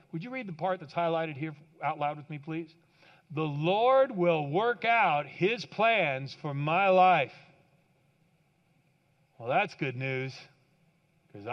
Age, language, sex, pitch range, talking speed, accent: 40-59, English, male, 145-175 Hz, 145 wpm, American